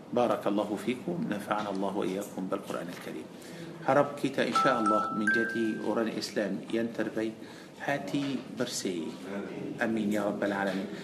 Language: Malay